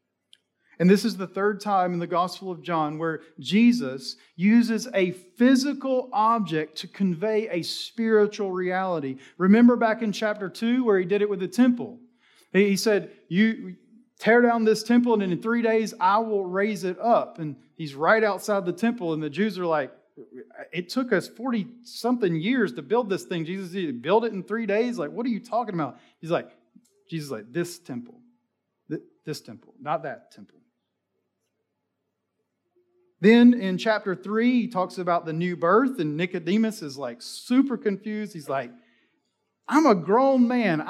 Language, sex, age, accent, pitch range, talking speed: English, male, 40-59, American, 170-230 Hz, 170 wpm